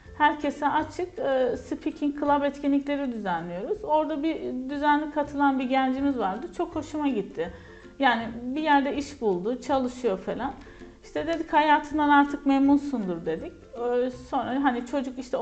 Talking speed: 130 wpm